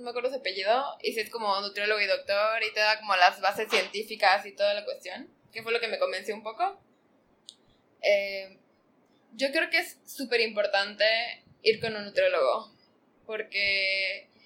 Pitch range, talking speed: 210-260 Hz, 180 wpm